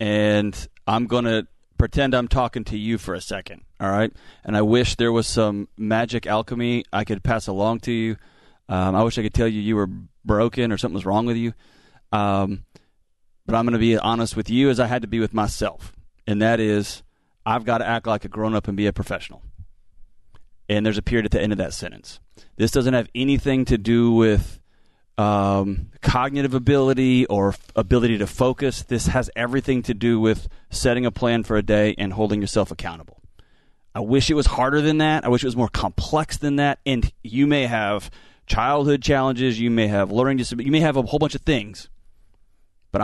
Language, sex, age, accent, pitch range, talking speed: English, male, 30-49, American, 100-125 Hz, 205 wpm